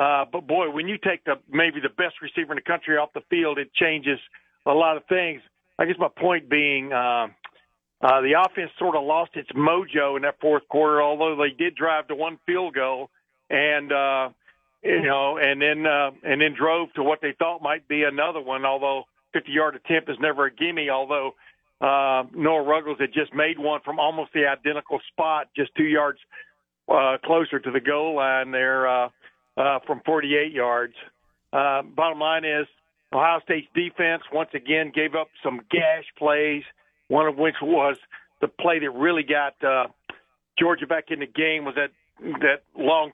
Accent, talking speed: American, 190 wpm